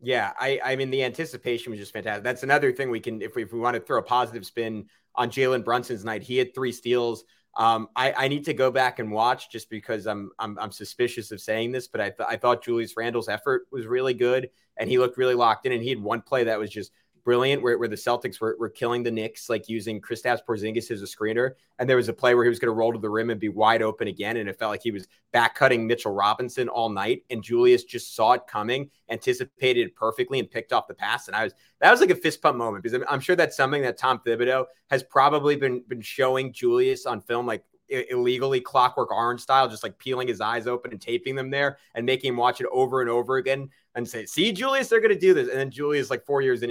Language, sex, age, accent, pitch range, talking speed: English, male, 30-49, American, 115-150 Hz, 260 wpm